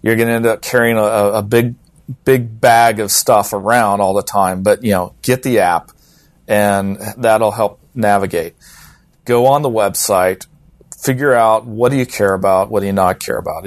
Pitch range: 100-130 Hz